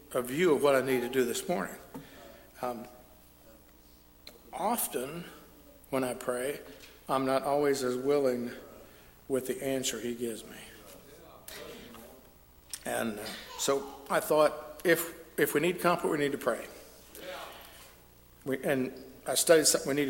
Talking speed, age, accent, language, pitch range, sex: 135 wpm, 60-79, American, English, 120-150 Hz, male